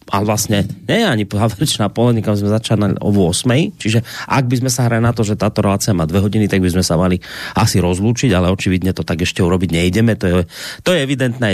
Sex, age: male, 30-49